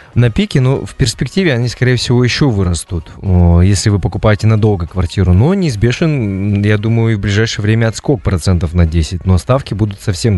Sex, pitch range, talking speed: male, 100-125 Hz, 180 wpm